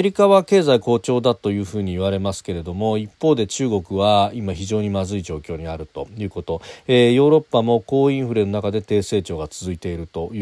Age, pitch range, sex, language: 40-59, 95-130 Hz, male, Japanese